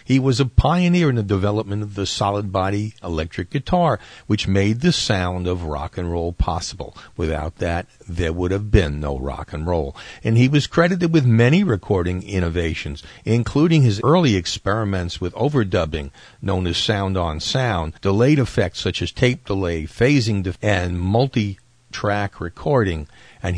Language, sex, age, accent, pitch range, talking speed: English, male, 50-69, American, 90-125 Hz, 150 wpm